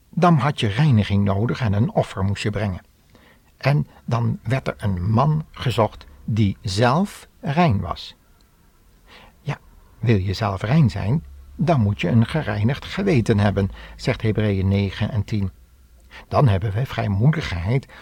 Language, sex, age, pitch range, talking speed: Dutch, male, 60-79, 100-135 Hz, 145 wpm